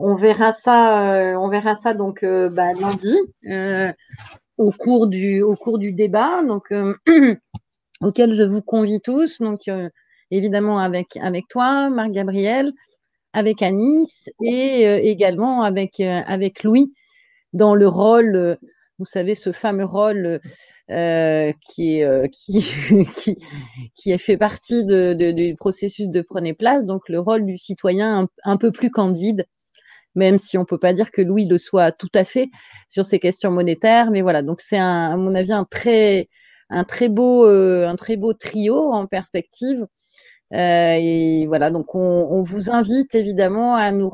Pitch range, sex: 185-230 Hz, female